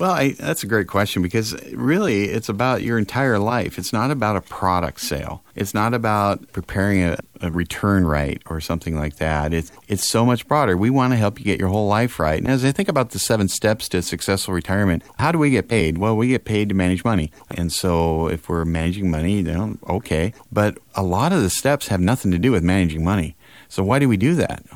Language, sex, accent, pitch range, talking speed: English, male, American, 90-115 Hz, 230 wpm